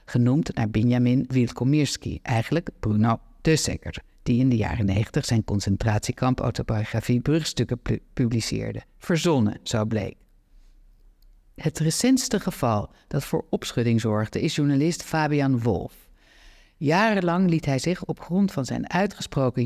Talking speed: 120 wpm